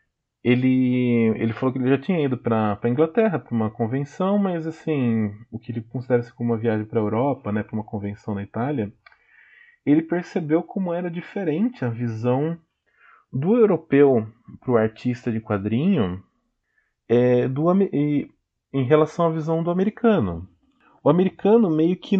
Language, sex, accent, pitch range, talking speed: Portuguese, male, Brazilian, 115-165 Hz, 155 wpm